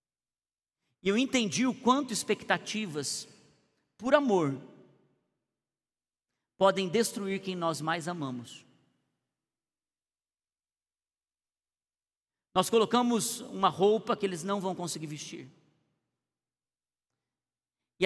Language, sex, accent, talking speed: Portuguese, male, Brazilian, 85 wpm